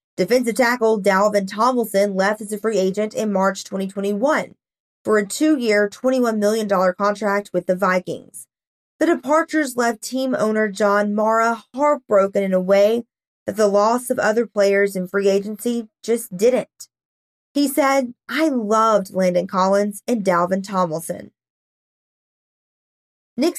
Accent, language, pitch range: American, English, 200-245 Hz